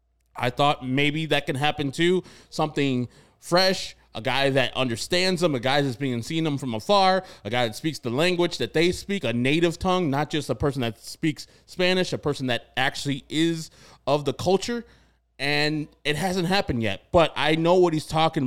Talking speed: 195 wpm